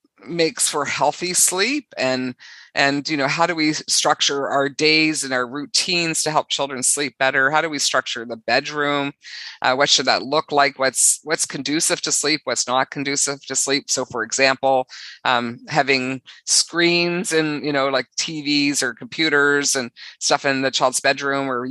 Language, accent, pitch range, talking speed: English, American, 130-155 Hz, 175 wpm